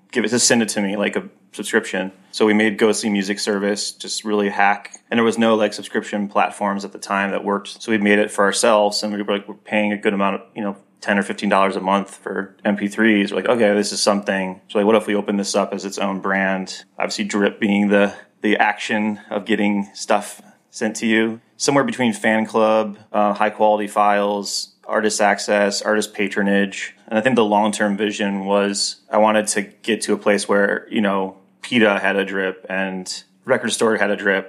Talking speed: 220 wpm